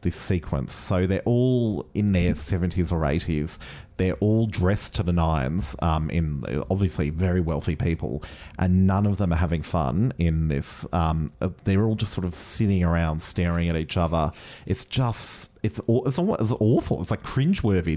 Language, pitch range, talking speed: English, 85-105 Hz, 175 wpm